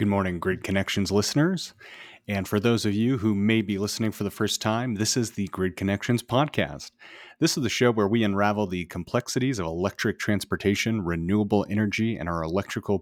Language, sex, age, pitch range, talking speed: English, male, 30-49, 95-115 Hz, 190 wpm